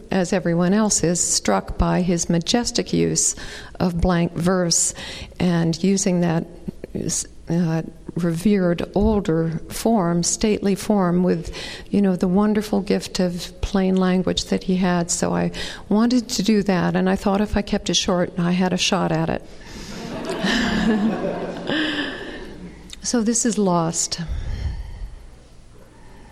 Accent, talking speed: American, 130 wpm